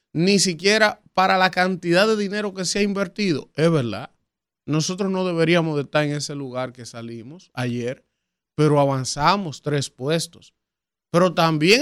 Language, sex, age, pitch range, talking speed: Spanish, male, 30-49, 140-185 Hz, 145 wpm